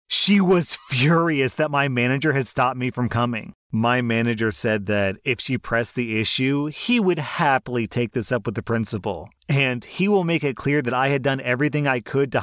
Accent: American